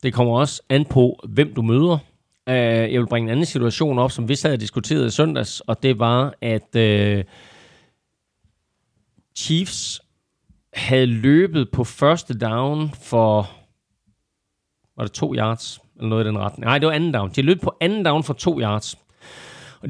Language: Danish